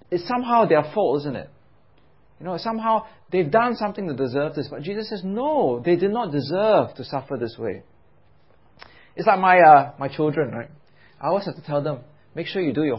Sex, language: male, English